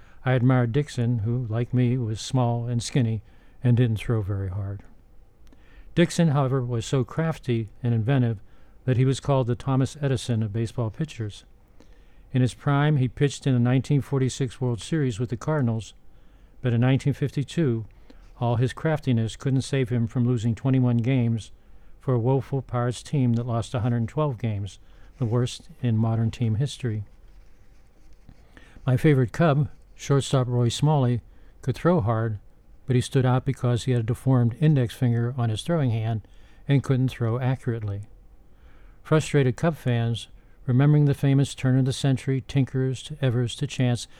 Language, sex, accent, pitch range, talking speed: English, male, American, 115-135 Hz, 160 wpm